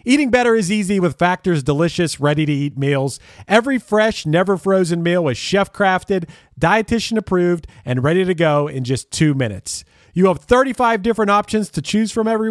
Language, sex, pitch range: English, male, 140-200 Hz